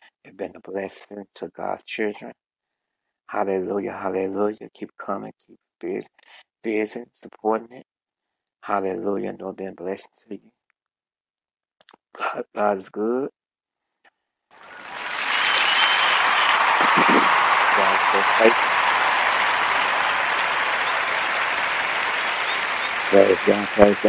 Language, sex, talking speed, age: English, male, 60 wpm, 60-79